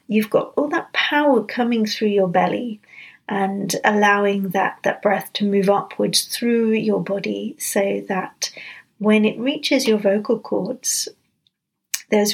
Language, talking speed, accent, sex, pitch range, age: English, 140 wpm, British, female, 195-230 Hz, 40-59